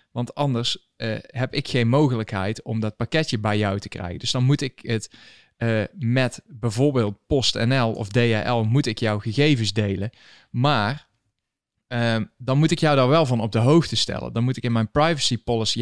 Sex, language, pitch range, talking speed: male, Dutch, 110-135 Hz, 190 wpm